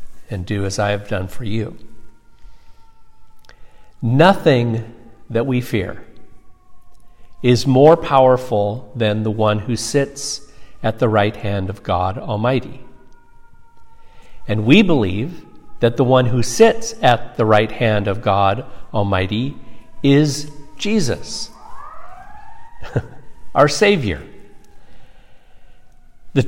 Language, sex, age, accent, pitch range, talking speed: English, male, 50-69, American, 110-150 Hz, 105 wpm